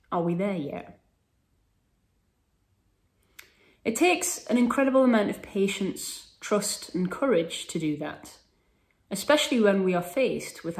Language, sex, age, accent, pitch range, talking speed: English, female, 30-49, British, 155-225 Hz, 130 wpm